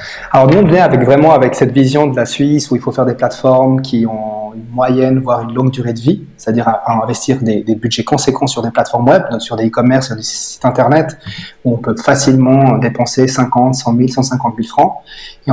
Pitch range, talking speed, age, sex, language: 120-140 Hz, 230 wpm, 30-49, male, French